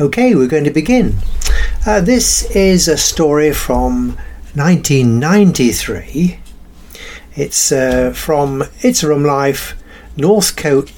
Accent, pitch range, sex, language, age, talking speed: British, 120-160 Hz, male, English, 60-79, 105 wpm